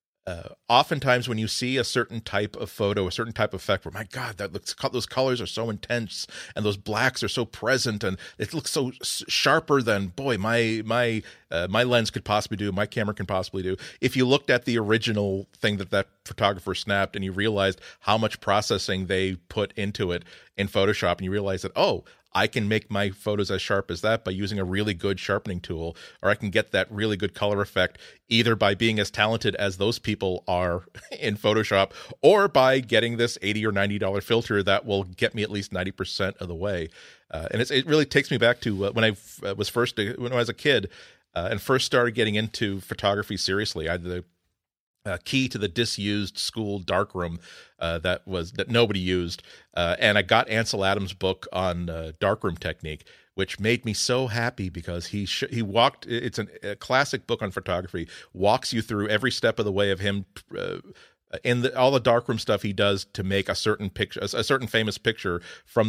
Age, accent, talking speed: 40-59, American, 210 wpm